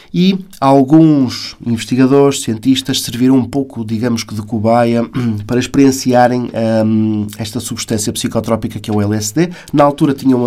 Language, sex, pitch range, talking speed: Portuguese, male, 115-140 Hz, 140 wpm